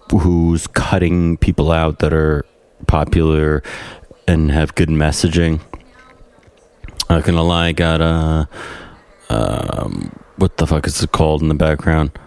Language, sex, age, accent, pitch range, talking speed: English, male, 30-49, American, 80-100 Hz, 140 wpm